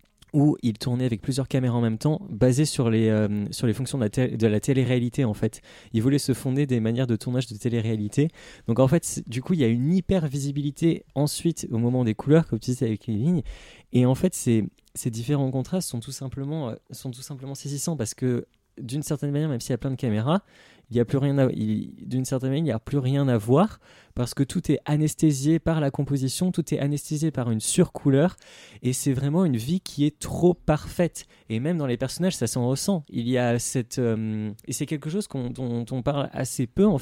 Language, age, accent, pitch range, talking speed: French, 20-39, French, 115-150 Hz, 225 wpm